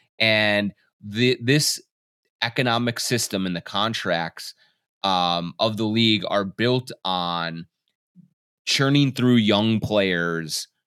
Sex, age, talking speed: male, 30-49, 105 wpm